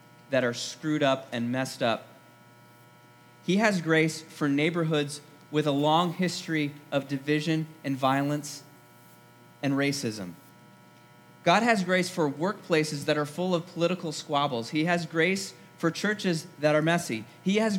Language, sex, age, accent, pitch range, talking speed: English, male, 30-49, American, 135-175 Hz, 145 wpm